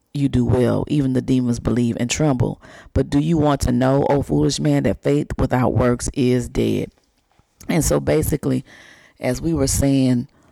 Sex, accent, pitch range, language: female, American, 125-145 Hz, English